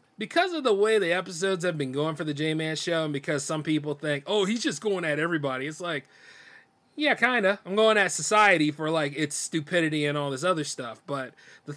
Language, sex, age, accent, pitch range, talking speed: English, male, 30-49, American, 130-175 Hz, 225 wpm